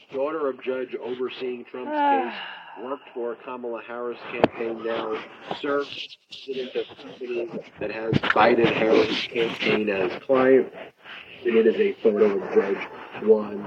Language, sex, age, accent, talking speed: English, male, 40-59, American, 135 wpm